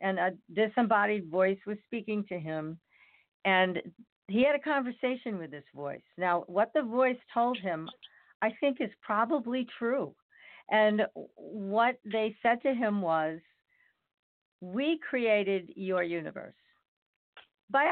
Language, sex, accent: English, female, American